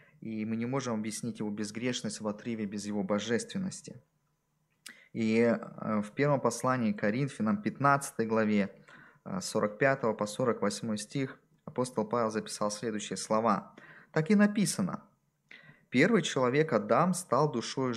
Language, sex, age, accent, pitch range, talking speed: Russian, male, 20-39, native, 115-165 Hz, 125 wpm